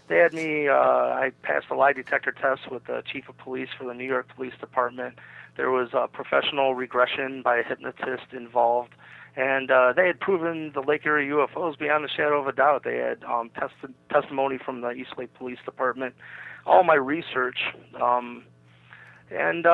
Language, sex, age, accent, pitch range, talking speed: English, male, 30-49, American, 125-155 Hz, 185 wpm